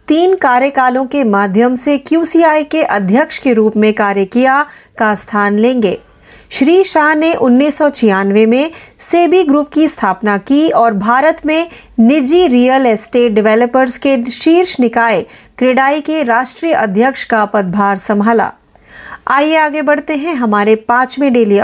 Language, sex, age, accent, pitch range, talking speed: Marathi, female, 30-49, native, 225-300 Hz, 140 wpm